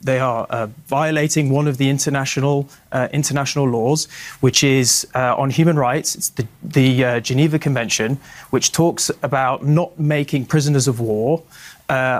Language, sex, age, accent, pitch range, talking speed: English, male, 20-39, British, 130-160 Hz, 160 wpm